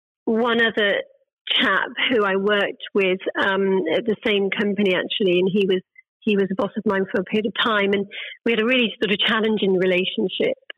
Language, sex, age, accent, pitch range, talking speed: English, female, 40-59, British, 195-220 Hz, 200 wpm